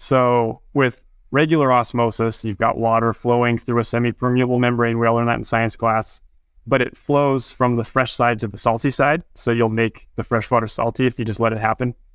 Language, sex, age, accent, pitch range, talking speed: English, male, 20-39, American, 110-125 Hz, 210 wpm